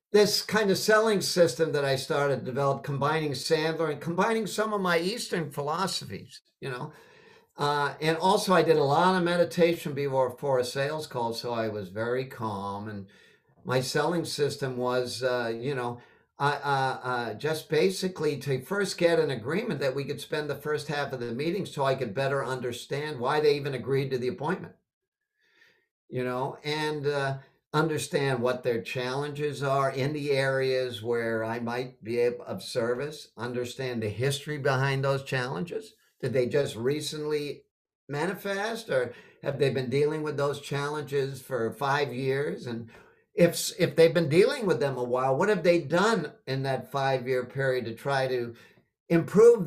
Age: 50-69